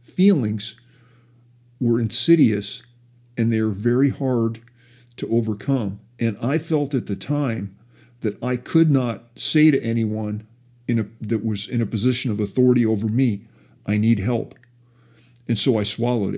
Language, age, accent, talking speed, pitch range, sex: English, 50-69, American, 140 wpm, 110-130 Hz, male